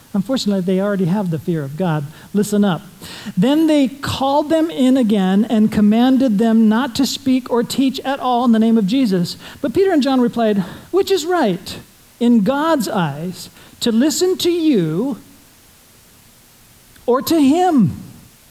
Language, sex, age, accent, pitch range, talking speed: English, male, 50-69, American, 180-255 Hz, 160 wpm